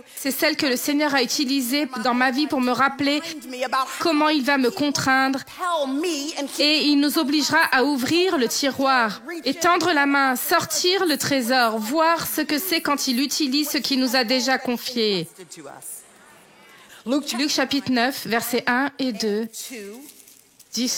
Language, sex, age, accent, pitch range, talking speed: French, female, 30-49, French, 245-310 Hz, 135 wpm